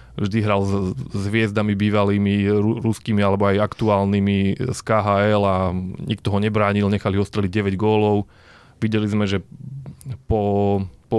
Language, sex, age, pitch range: Slovak, male, 20-39, 100-115 Hz